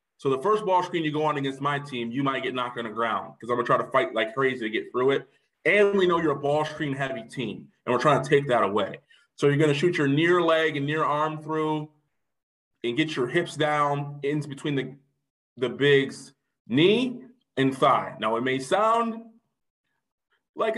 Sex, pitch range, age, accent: male, 130-160 Hz, 20-39, American